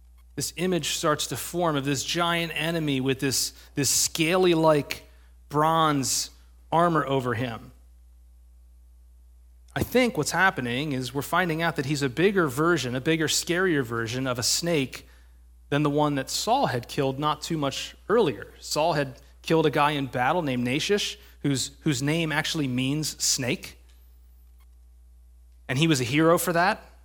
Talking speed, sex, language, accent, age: 155 wpm, male, English, American, 30-49